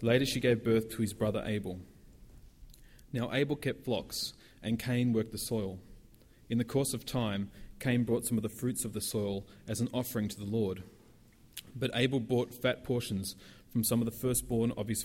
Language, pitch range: English, 105-125 Hz